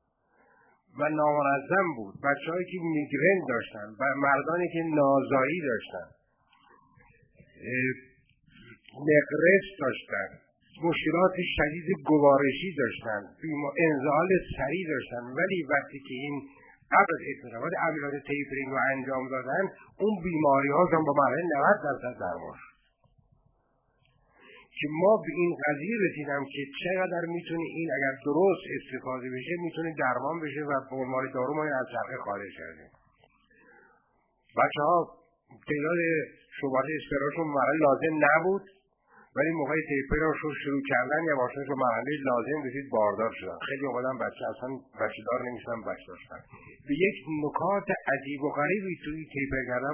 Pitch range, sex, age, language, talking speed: 130-165 Hz, male, 50-69, Persian, 125 wpm